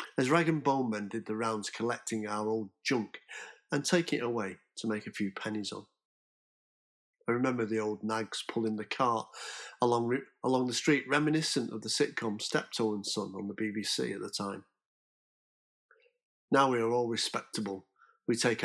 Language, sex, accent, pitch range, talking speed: English, male, British, 110-135 Hz, 175 wpm